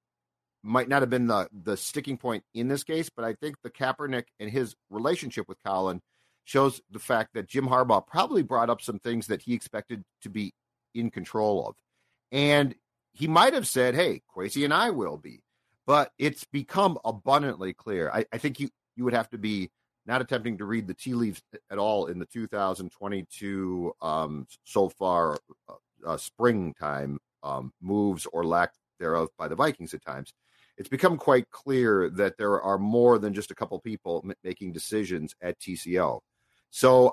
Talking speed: 180 wpm